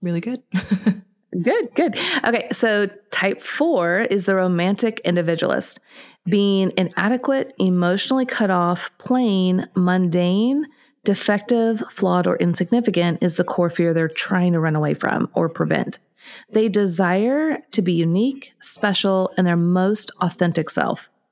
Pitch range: 180-230 Hz